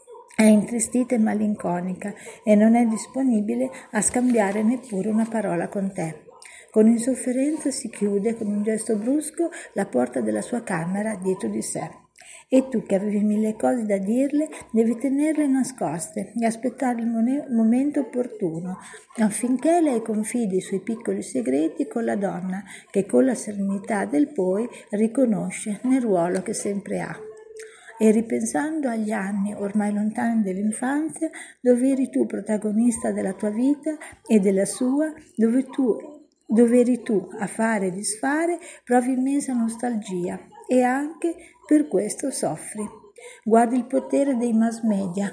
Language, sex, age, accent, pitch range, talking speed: Italian, female, 50-69, native, 210-265 Hz, 145 wpm